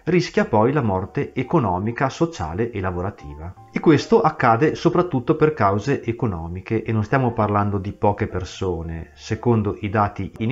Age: 30-49